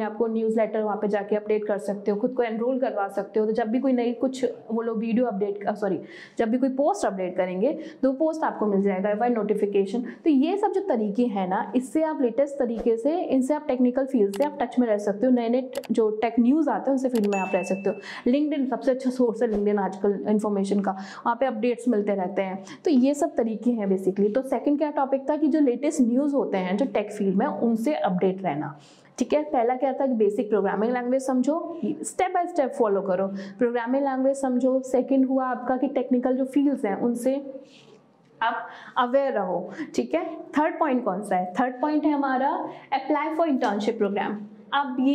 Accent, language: Indian, English